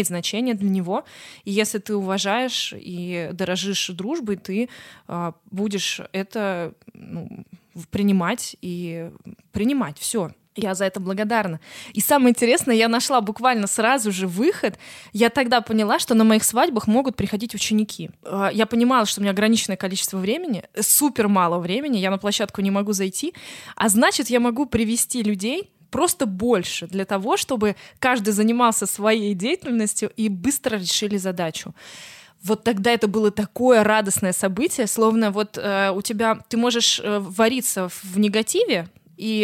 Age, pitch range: 20-39, 190-235 Hz